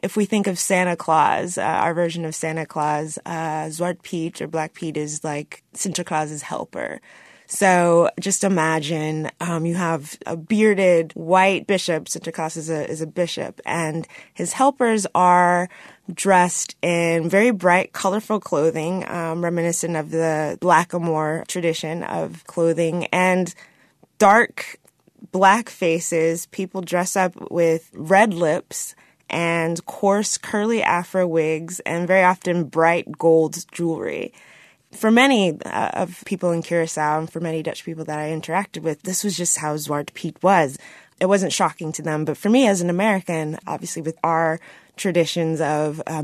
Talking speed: 155 wpm